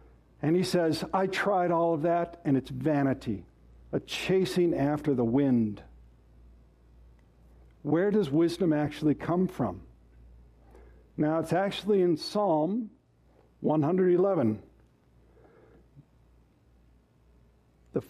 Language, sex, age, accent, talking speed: English, male, 60-79, American, 95 wpm